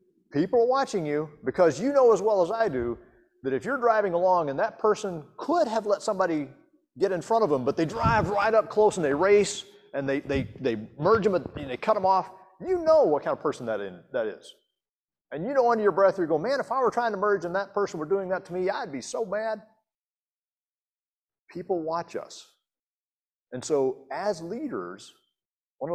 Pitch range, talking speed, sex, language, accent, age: 155-220 Hz, 215 wpm, male, English, American, 40-59